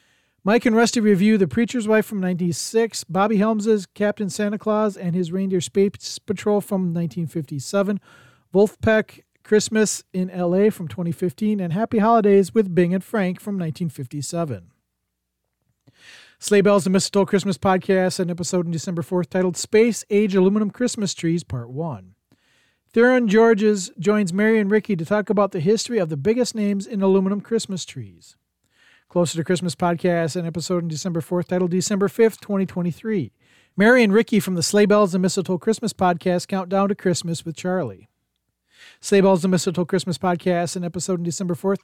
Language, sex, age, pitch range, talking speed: English, male, 40-59, 175-210 Hz, 165 wpm